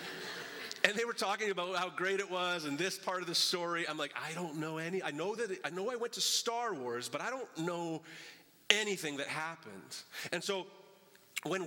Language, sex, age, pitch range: English, male, 30-49, 150-195 Hz